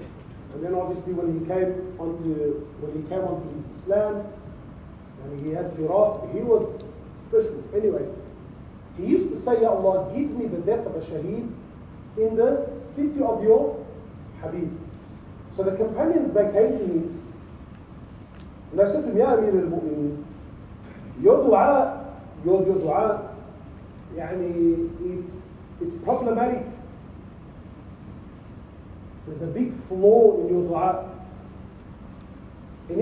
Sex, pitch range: male, 185-275 Hz